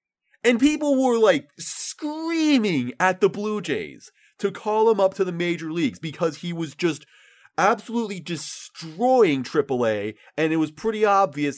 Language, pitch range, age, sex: English, 145-220 Hz, 30-49, male